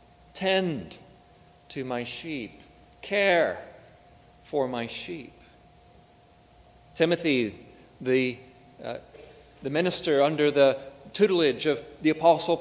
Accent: American